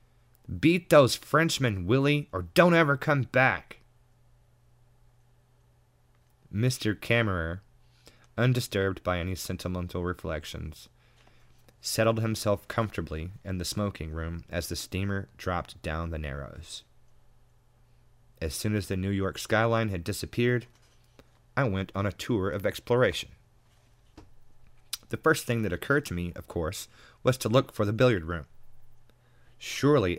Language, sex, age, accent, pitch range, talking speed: English, male, 30-49, American, 90-120 Hz, 125 wpm